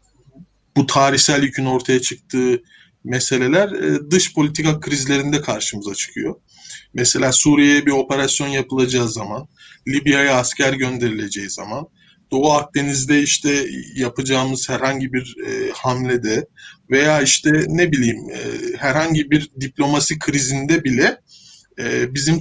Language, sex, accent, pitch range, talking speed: Turkish, male, native, 130-160 Hz, 100 wpm